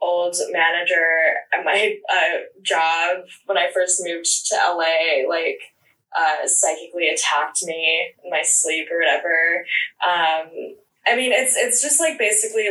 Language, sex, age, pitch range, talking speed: English, female, 10-29, 170-220 Hz, 140 wpm